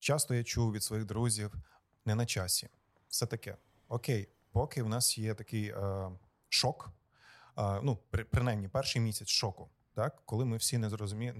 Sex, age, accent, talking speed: male, 30-49, native, 170 wpm